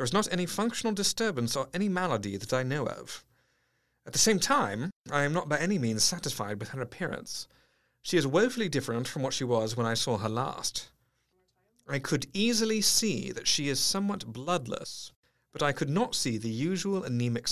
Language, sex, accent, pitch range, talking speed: English, male, British, 125-185 Hz, 195 wpm